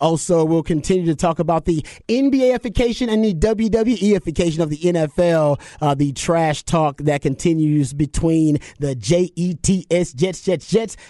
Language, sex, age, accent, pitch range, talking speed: English, male, 30-49, American, 135-175 Hz, 140 wpm